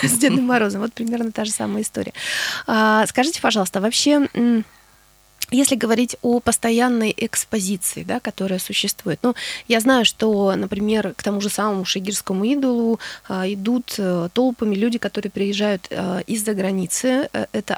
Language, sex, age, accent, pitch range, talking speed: Russian, female, 20-39, native, 195-235 Hz, 145 wpm